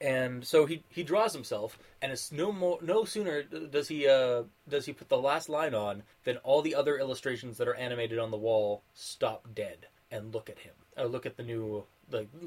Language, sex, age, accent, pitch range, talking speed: English, male, 20-39, American, 115-140 Hz, 215 wpm